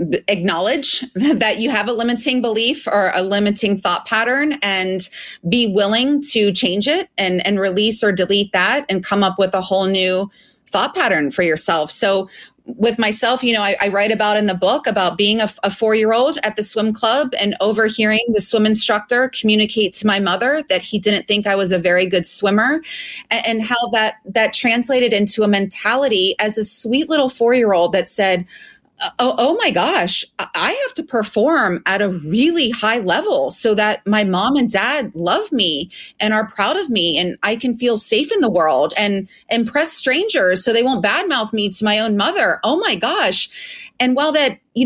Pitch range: 195-245 Hz